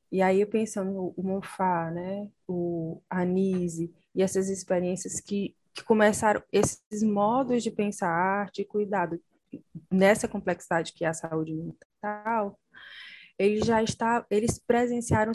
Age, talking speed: 20-39, 135 wpm